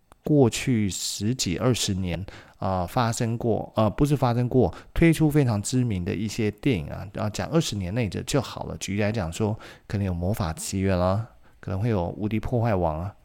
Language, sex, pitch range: Chinese, male, 95-125 Hz